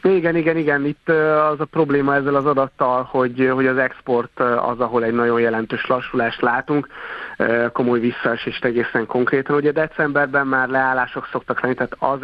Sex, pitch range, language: male, 110-130 Hz, Hungarian